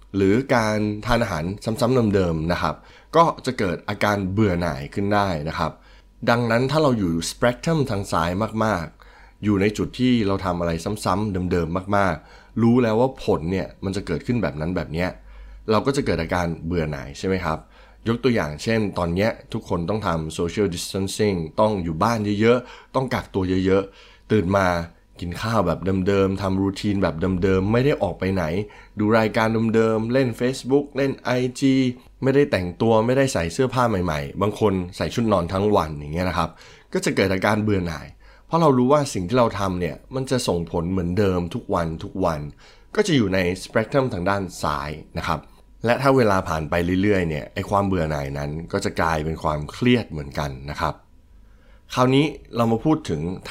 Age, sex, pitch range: 20-39, male, 85-115 Hz